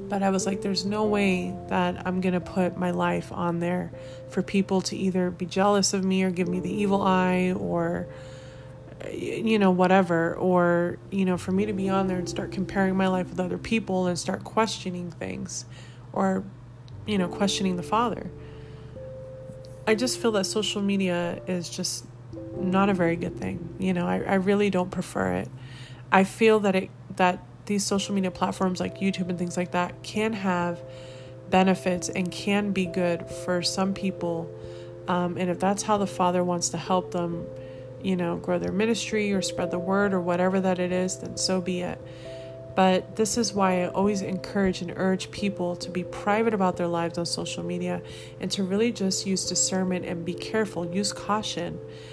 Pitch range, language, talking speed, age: 170-190 Hz, English, 190 wpm, 30-49